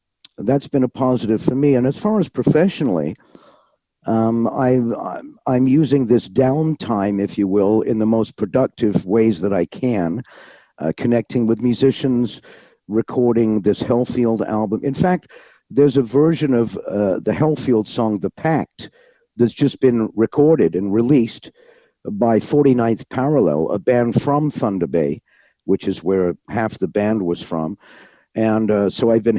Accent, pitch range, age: American, 110-145 Hz, 50-69